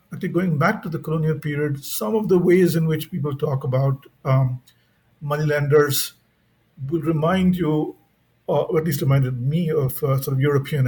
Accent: Indian